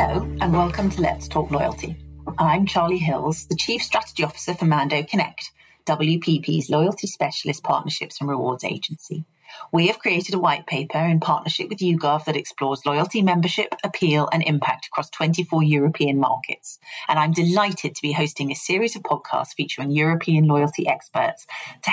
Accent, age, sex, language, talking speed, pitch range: British, 30-49, female, English, 165 wpm, 150-180 Hz